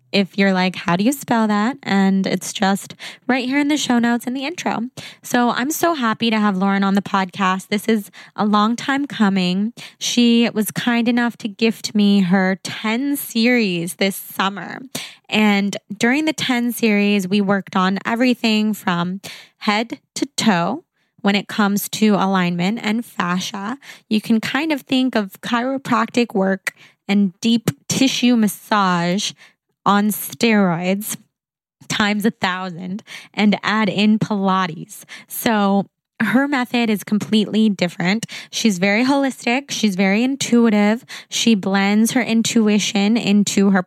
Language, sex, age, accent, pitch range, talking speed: English, female, 20-39, American, 195-235 Hz, 145 wpm